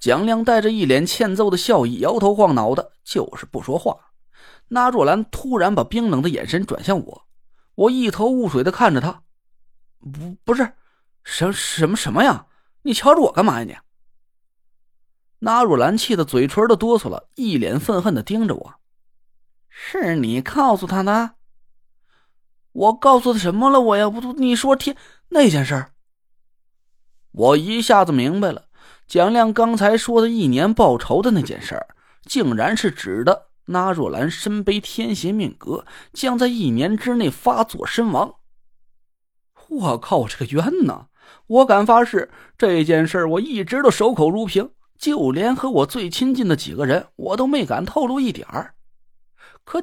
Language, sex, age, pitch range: Chinese, male, 20-39, 180-245 Hz